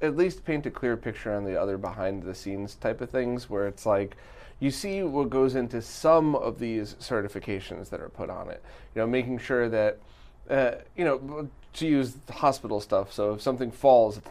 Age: 30-49